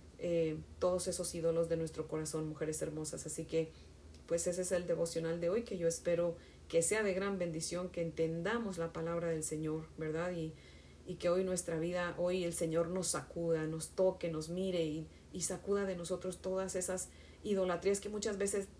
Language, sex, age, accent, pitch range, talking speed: Spanish, female, 40-59, Mexican, 155-180 Hz, 190 wpm